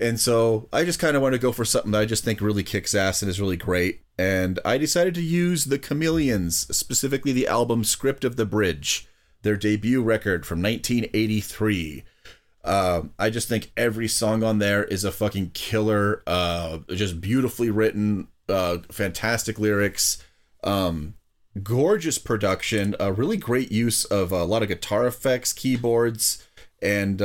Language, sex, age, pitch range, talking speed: English, male, 30-49, 95-115 Hz, 165 wpm